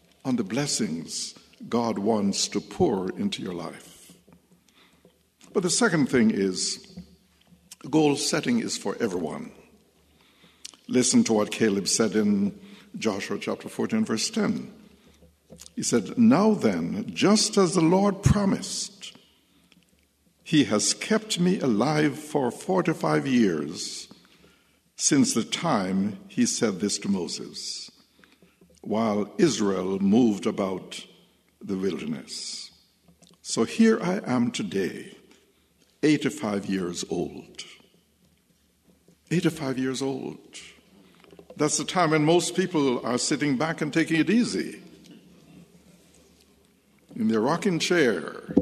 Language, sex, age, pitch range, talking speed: English, male, 60-79, 130-210 Hz, 120 wpm